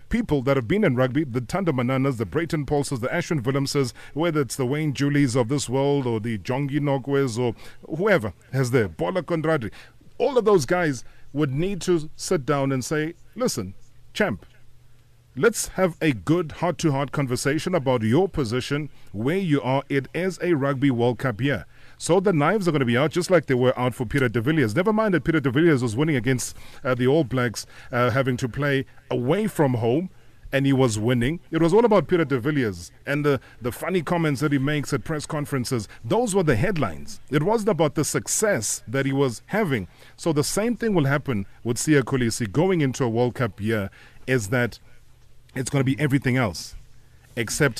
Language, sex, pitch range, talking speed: English, male, 125-155 Hz, 200 wpm